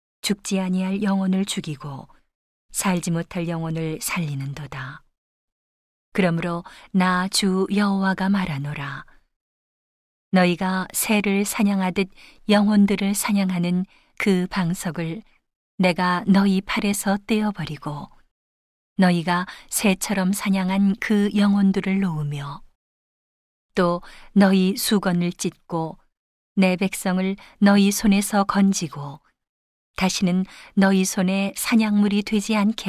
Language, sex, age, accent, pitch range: Korean, female, 40-59, native, 175-200 Hz